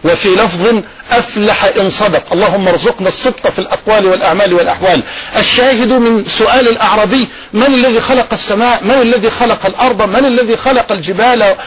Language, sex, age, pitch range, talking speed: Arabic, male, 50-69, 200-250 Hz, 145 wpm